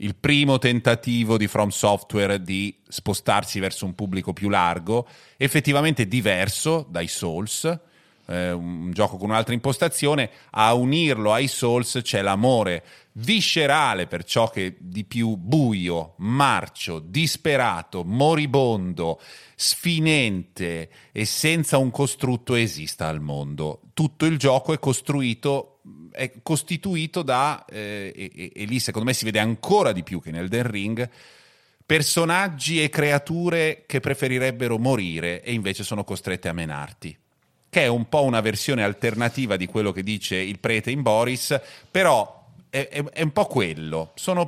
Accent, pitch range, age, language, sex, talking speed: native, 95-145 Hz, 30-49, Italian, male, 145 wpm